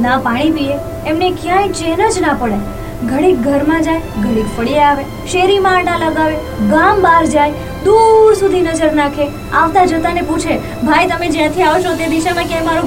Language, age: Gujarati, 20-39